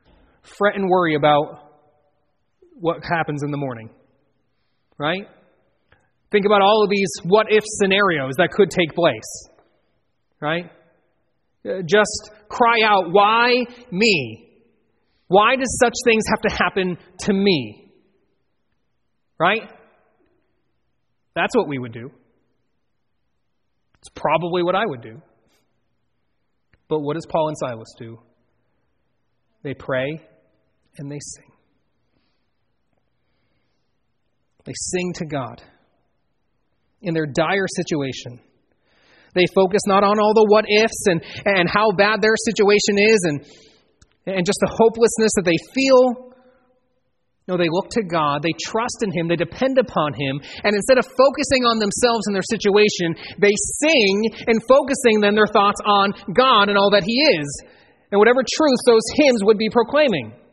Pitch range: 150-220 Hz